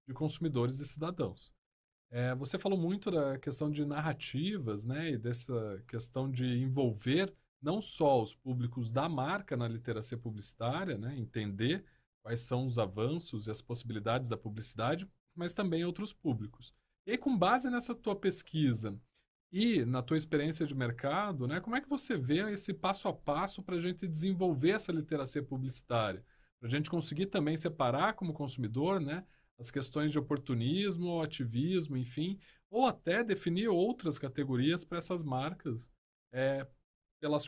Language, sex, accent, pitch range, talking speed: Portuguese, male, Brazilian, 125-175 Hz, 155 wpm